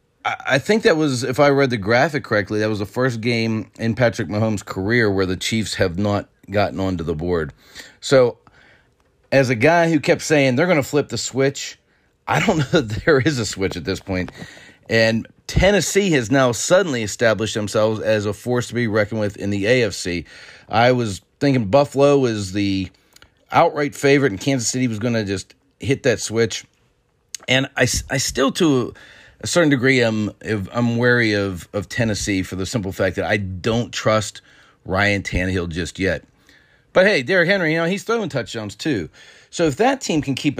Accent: American